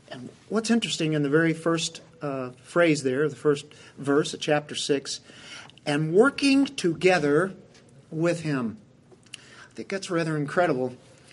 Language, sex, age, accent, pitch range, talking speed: English, male, 50-69, American, 135-165 Hz, 130 wpm